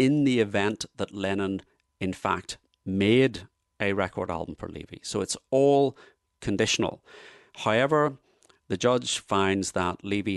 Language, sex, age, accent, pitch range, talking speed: English, male, 40-59, British, 85-115 Hz, 135 wpm